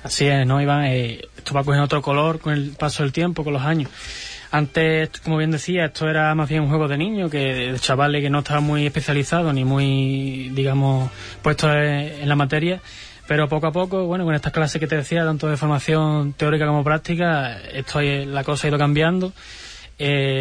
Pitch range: 140-155 Hz